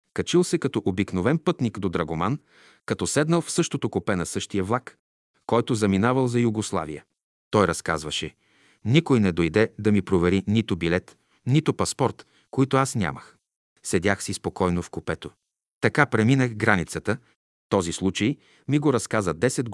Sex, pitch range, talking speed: male, 95-120 Hz, 145 wpm